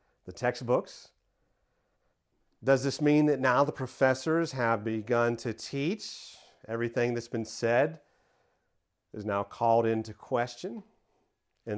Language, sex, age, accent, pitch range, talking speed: English, male, 40-59, American, 110-145 Hz, 115 wpm